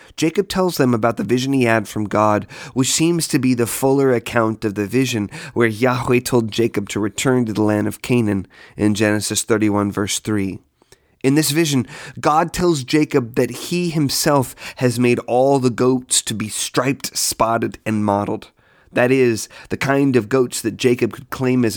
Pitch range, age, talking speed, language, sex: 105-135 Hz, 30-49, 185 wpm, English, male